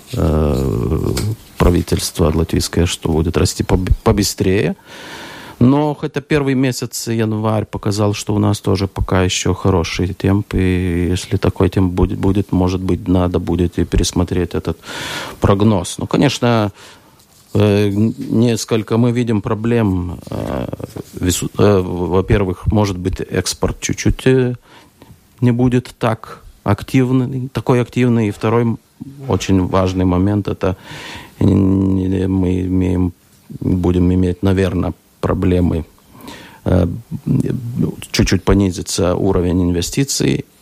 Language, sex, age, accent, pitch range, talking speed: Russian, male, 50-69, native, 90-110 Hz, 95 wpm